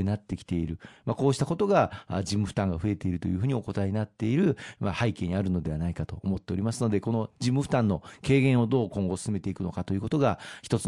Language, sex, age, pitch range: Japanese, male, 40-59, 100-125 Hz